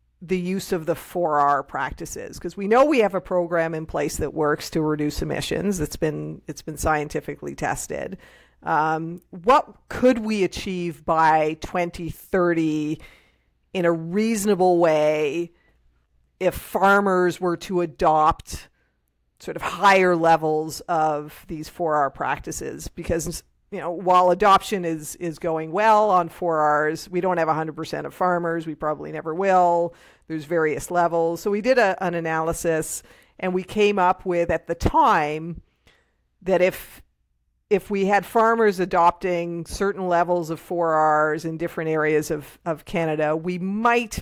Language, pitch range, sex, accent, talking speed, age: English, 155-185 Hz, female, American, 150 wpm, 50-69